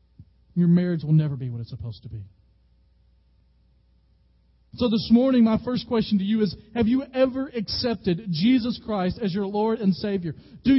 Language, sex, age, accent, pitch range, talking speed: English, male, 40-59, American, 150-225 Hz, 170 wpm